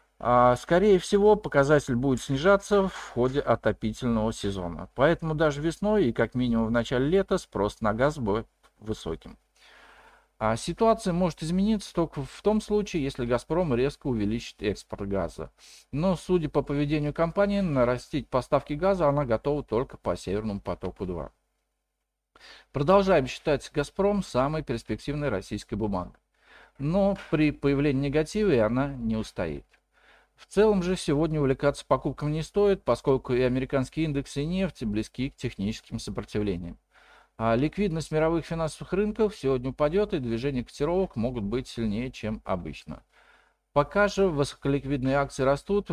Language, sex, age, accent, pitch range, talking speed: Russian, male, 50-69, native, 115-165 Hz, 130 wpm